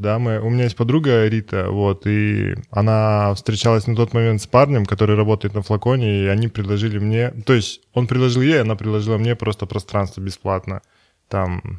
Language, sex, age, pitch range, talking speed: Russian, male, 20-39, 100-115 Hz, 185 wpm